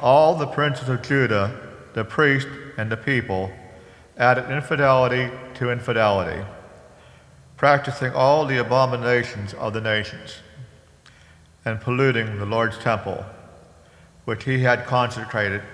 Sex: male